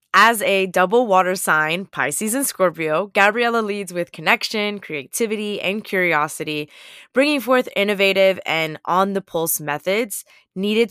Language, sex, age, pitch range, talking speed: English, female, 20-39, 155-215 Hz, 130 wpm